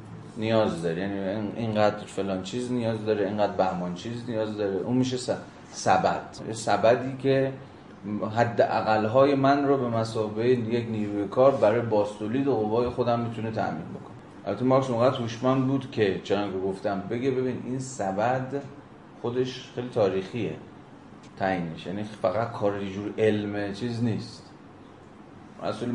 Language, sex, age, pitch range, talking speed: Persian, male, 30-49, 105-125 Hz, 135 wpm